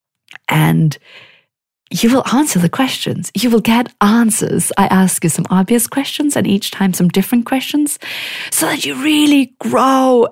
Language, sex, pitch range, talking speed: English, female, 165-220 Hz, 155 wpm